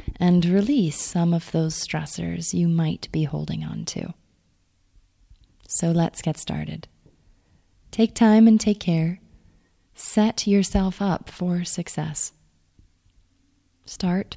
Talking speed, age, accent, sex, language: 115 wpm, 30-49, American, female, English